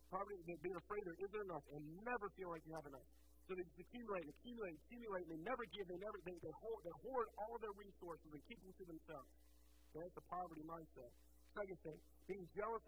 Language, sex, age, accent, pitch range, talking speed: English, male, 50-69, American, 155-200 Hz, 220 wpm